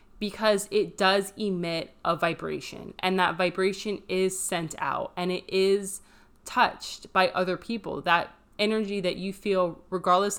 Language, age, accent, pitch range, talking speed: English, 20-39, American, 175-210 Hz, 145 wpm